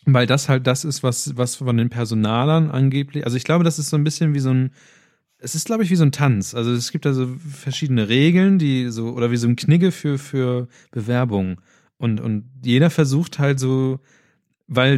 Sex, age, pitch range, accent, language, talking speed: male, 30-49, 110-135 Hz, German, German, 215 wpm